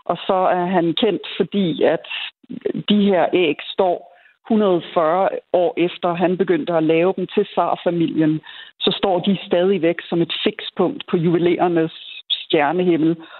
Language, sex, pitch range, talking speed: Danish, female, 175-220 Hz, 145 wpm